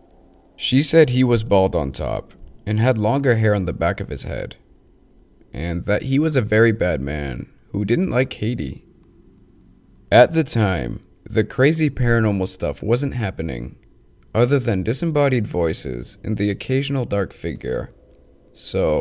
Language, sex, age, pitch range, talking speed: English, male, 20-39, 95-125 Hz, 150 wpm